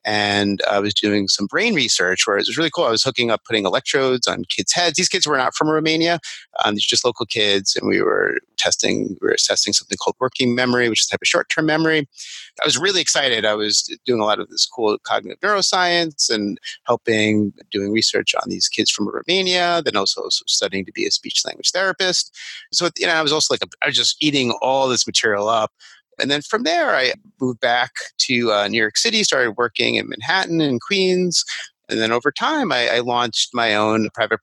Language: English